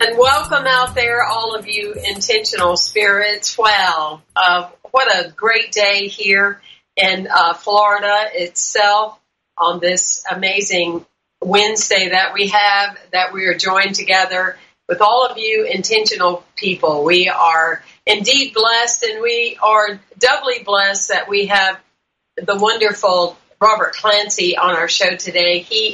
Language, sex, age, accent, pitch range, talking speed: English, female, 50-69, American, 180-220 Hz, 135 wpm